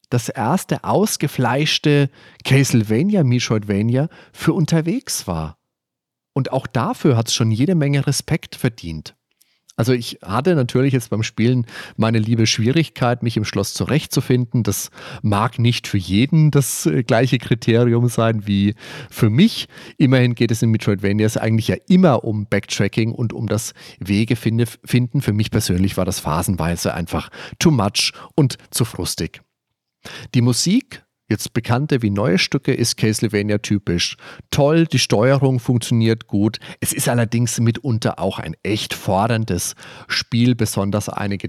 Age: 40-59